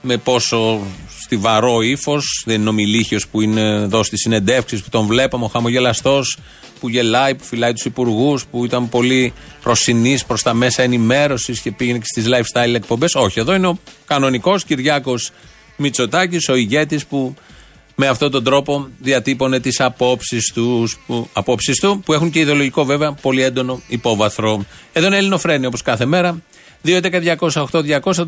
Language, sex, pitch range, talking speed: Greek, male, 120-165 Hz, 150 wpm